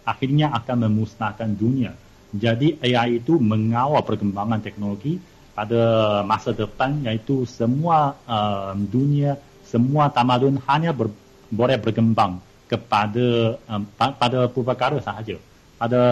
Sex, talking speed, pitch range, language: male, 110 wpm, 110-130 Hz, Malay